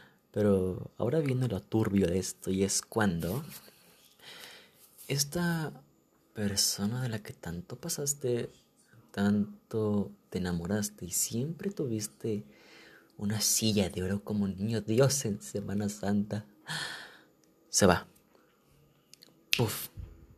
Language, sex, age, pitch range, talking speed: Spanish, male, 30-49, 100-120 Hz, 110 wpm